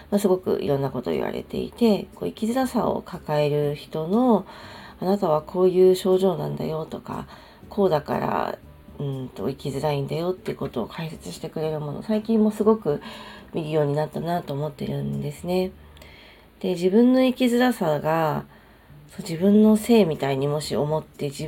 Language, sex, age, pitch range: Japanese, female, 40-59, 150-205 Hz